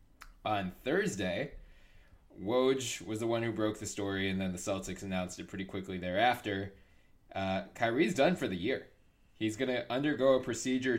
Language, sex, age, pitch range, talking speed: English, male, 20-39, 95-115 Hz, 170 wpm